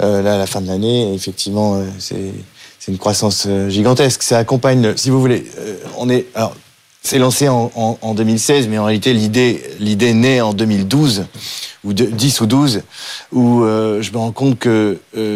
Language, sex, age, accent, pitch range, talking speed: French, male, 30-49, French, 110-130 Hz, 200 wpm